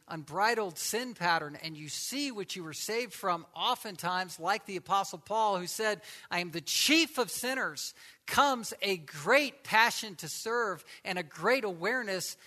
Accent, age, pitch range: American, 50-69, 170-225 Hz